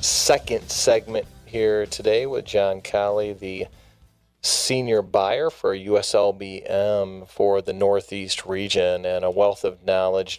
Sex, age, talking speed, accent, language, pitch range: male, 30-49, 120 wpm, American, English, 95-115 Hz